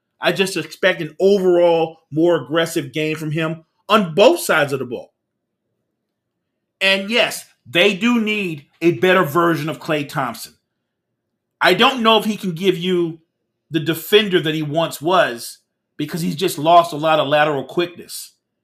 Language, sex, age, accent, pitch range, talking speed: English, male, 40-59, American, 160-200 Hz, 160 wpm